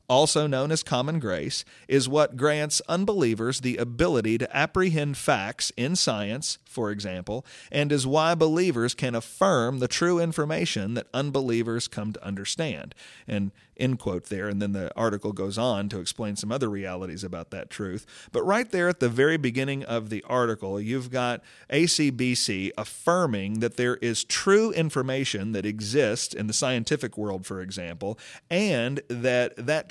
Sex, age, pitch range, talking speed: male, 40-59, 105-145 Hz, 160 wpm